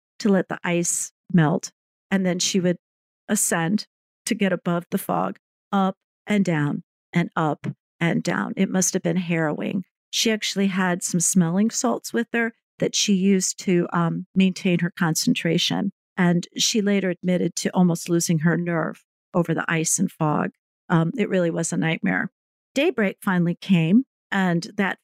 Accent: American